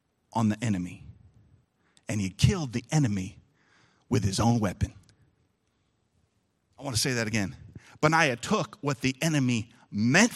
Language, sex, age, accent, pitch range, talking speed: English, male, 40-59, American, 115-170 Hz, 140 wpm